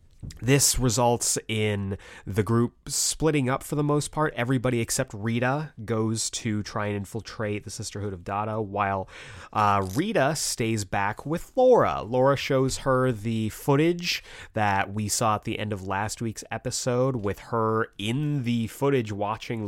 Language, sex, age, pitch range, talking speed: English, male, 30-49, 100-125 Hz, 155 wpm